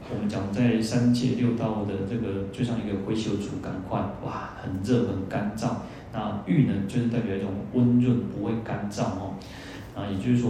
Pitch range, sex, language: 100-125 Hz, male, Chinese